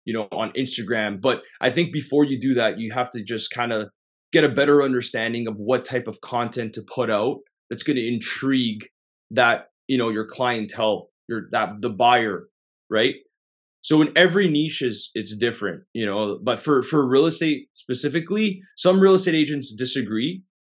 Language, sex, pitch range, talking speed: English, male, 115-145 Hz, 185 wpm